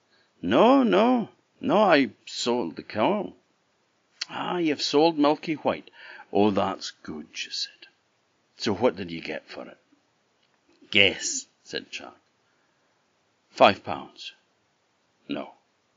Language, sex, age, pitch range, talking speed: English, male, 60-79, 190-280 Hz, 115 wpm